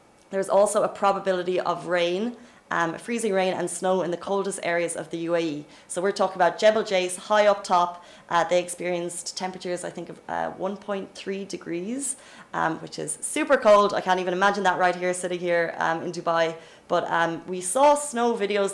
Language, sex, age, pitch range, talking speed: Arabic, female, 20-39, 170-200 Hz, 190 wpm